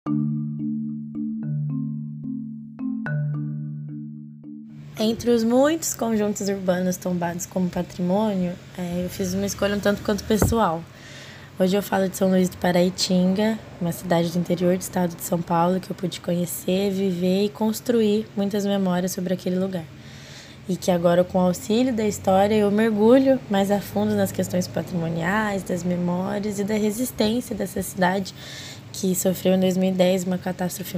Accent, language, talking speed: Brazilian, Portuguese, 145 wpm